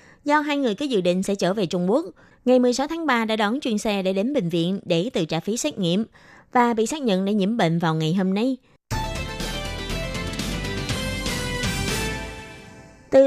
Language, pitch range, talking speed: Vietnamese, 185-255 Hz, 185 wpm